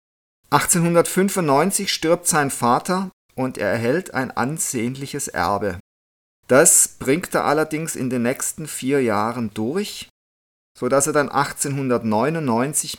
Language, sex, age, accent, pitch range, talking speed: German, male, 50-69, German, 110-150 Hz, 115 wpm